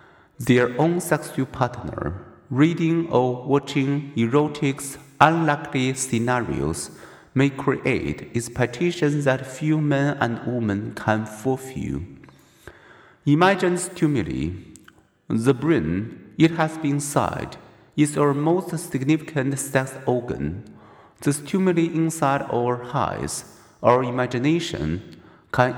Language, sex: Chinese, male